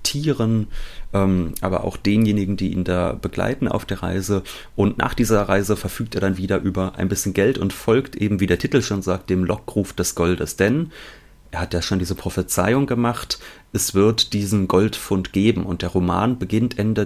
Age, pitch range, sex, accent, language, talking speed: 30-49, 95-110 Hz, male, German, German, 190 wpm